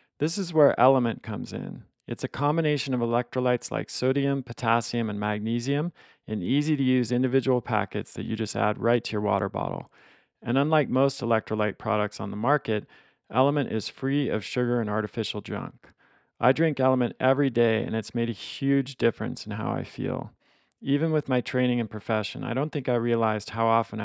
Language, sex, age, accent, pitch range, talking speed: English, male, 40-59, American, 110-135 Hz, 185 wpm